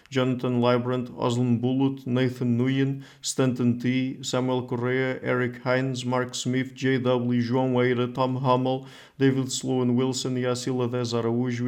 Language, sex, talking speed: English, male, 135 wpm